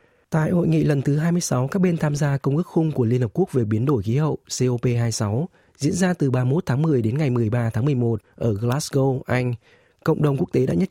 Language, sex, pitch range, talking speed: Vietnamese, male, 120-155 Hz, 235 wpm